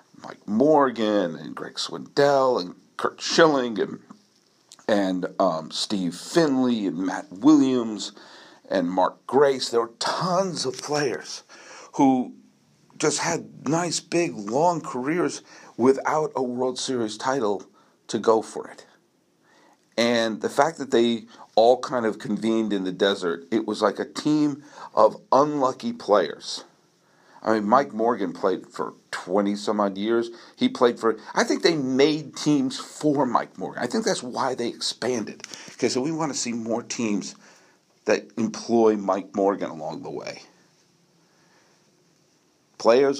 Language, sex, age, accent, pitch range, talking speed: English, male, 50-69, American, 110-160 Hz, 145 wpm